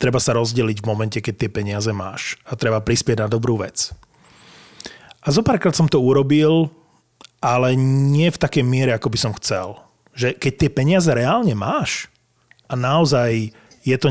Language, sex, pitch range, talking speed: Slovak, male, 115-140 Hz, 165 wpm